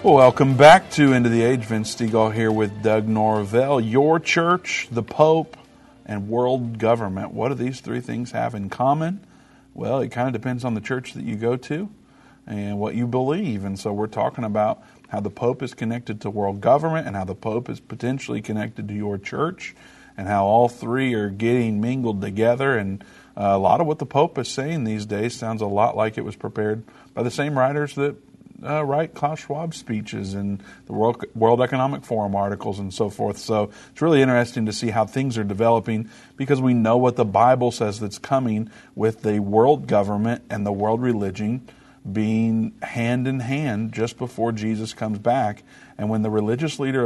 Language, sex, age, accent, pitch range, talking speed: English, male, 50-69, American, 110-130 Hz, 195 wpm